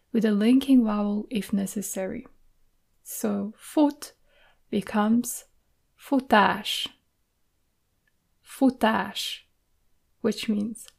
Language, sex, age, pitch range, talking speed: Hungarian, female, 20-39, 200-235 Hz, 70 wpm